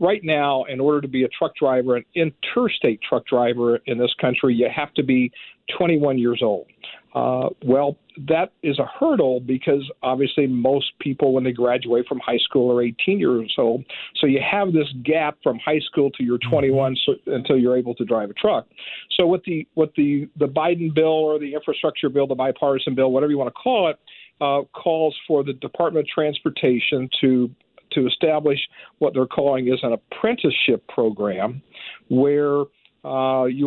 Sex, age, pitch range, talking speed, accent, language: male, 50-69, 125-150 Hz, 185 wpm, American, English